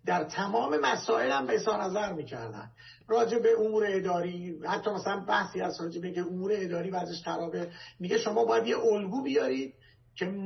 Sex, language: male, Persian